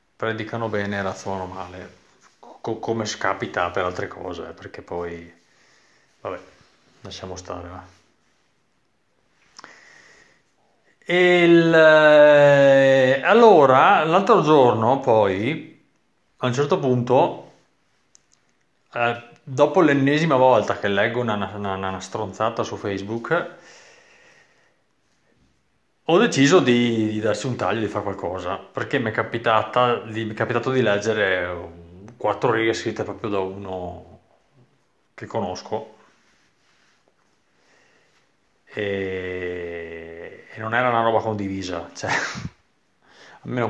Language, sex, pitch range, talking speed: Italian, male, 95-130 Hz, 95 wpm